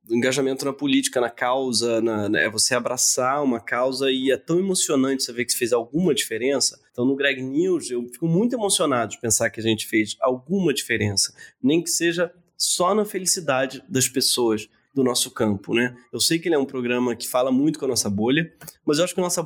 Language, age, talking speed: Portuguese, 20-39, 215 wpm